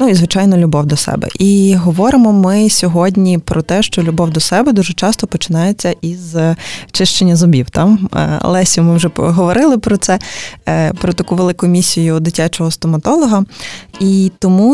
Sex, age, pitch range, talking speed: female, 20-39, 165-195 Hz, 150 wpm